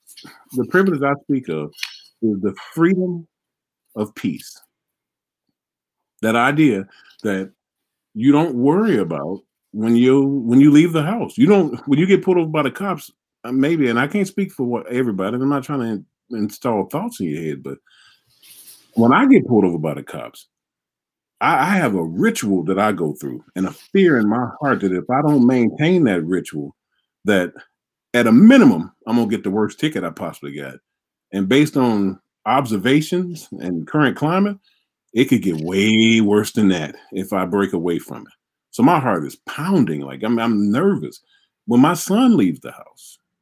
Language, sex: English, male